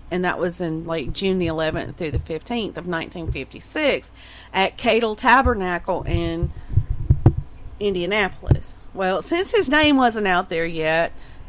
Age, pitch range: 40-59, 170-225 Hz